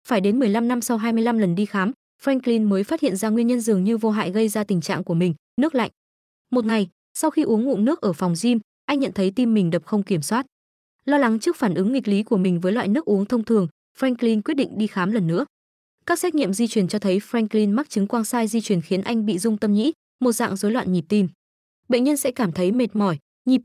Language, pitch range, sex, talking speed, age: Vietnamese, 195-245 Hz, female, 260 wpm, 20-39